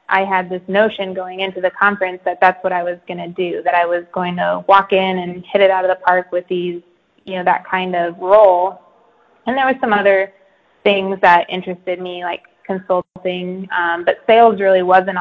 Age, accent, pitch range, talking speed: 20-39, American, 175-190 Hz, 215 wpm